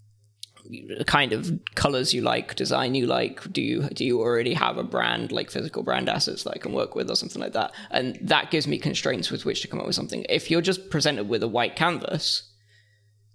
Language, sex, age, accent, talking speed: English, male, 20-39, British, 225 wpm